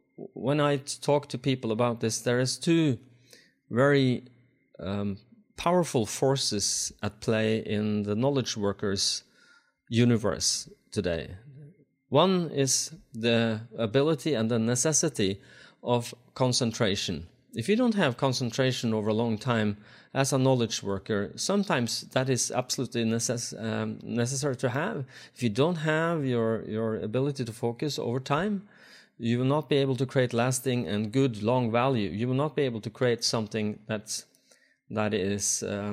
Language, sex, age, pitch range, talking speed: English, male, 30-49, 115-145 Hz, 145 wpm